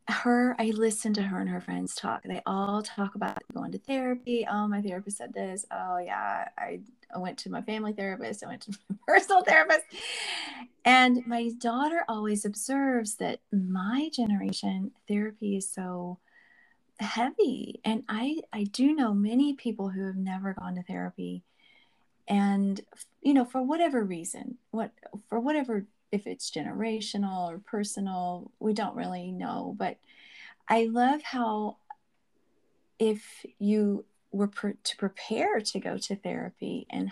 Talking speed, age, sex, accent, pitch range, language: 150 wpm, 30-49, female, American, 195-245 Hz, English